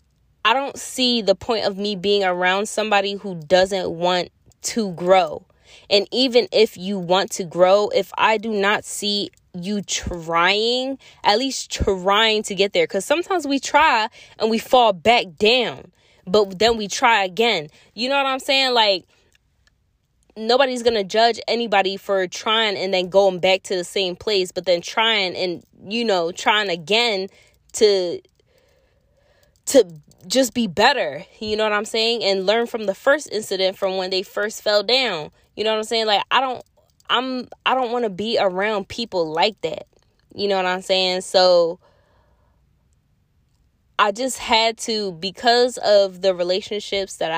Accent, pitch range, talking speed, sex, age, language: American, 185-235 Hz, 170 wpm, female, 20-39, English